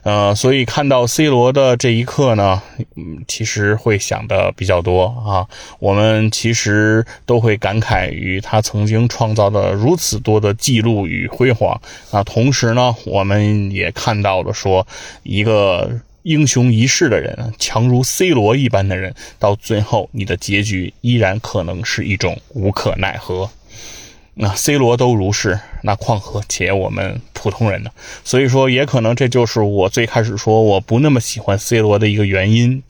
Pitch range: 100-120 Hz